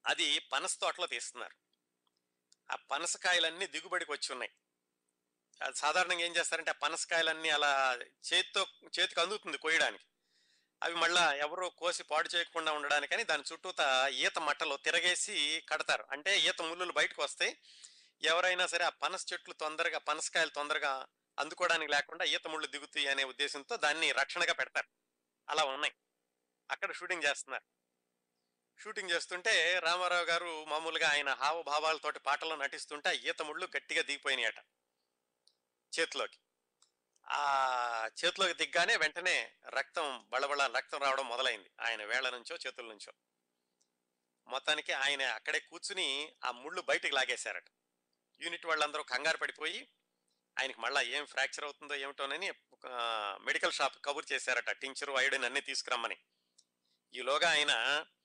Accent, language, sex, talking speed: native, Telugu, male, 125 wpm